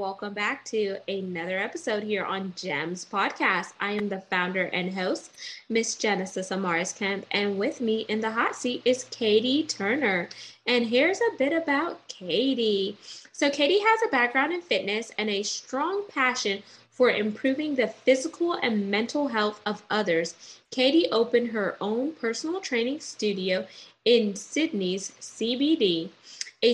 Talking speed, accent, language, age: 150 wpm, American, English, 20-39